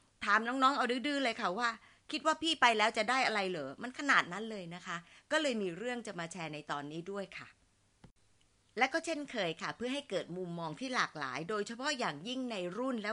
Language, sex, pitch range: Thai, female, 175-250 Hz